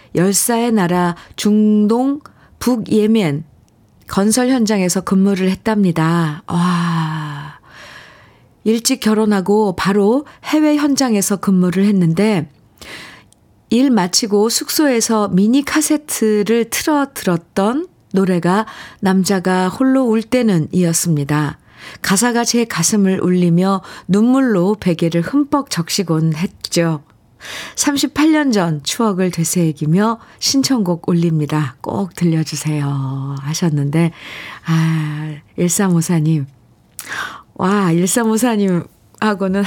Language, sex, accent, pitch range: Korean, female, native, 170-220 Hz